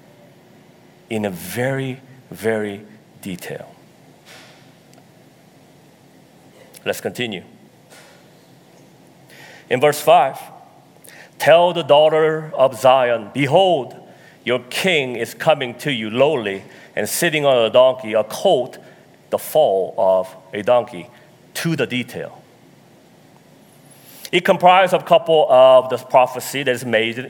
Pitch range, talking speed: 115-160 Hz, 105 wpm